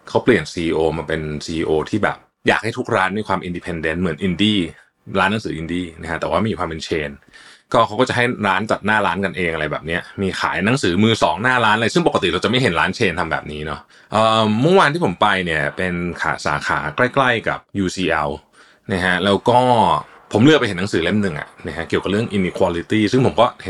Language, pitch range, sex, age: Thai, 85-115 Hz, male, 20-39